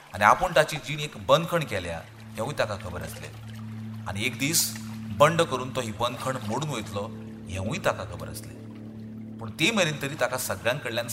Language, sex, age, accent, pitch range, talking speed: English, male, 40-59, Indian, 105-150 Hz, 155 wpm